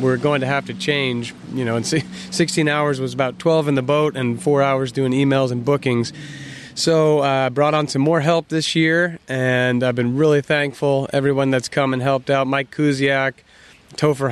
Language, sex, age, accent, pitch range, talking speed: English, male, 30-49, American, 130-150 Hz, 195 wpm